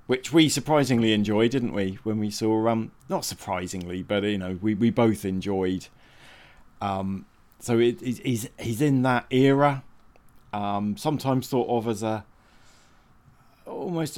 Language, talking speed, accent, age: English, 135 wpm, British, 20-39